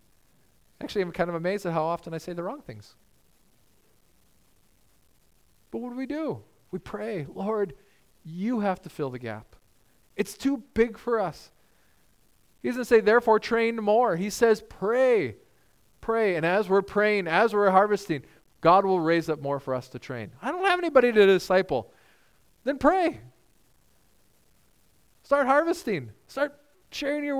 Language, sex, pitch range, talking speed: English, male, 130-220 Hz, 155 wpm